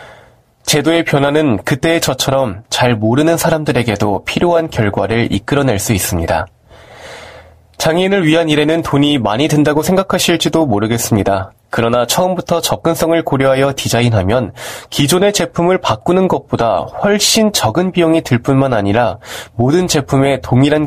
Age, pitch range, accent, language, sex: 20-39, 115-165 Hz, native, Korean, male